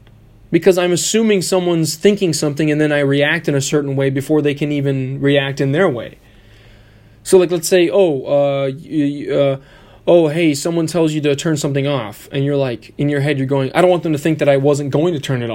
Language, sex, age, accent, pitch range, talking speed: English, male, 20-39, American, 120-170 Hz, 235 wpm